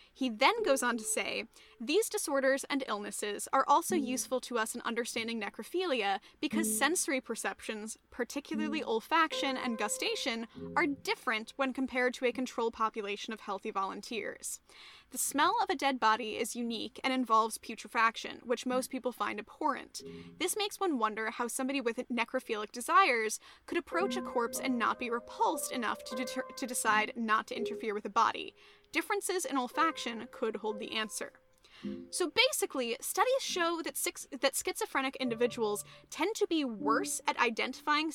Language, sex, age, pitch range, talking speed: English, female, 10-29, 230-300 Hz, 160 wpm